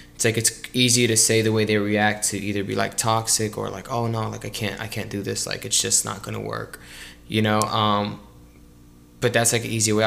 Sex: male